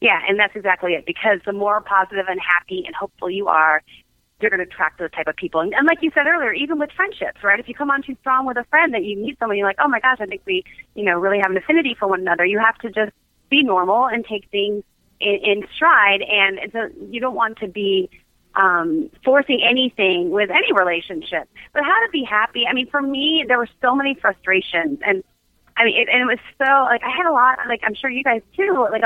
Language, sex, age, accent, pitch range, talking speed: English, female, 30-49, American, 195-260 Hz, 255 wpm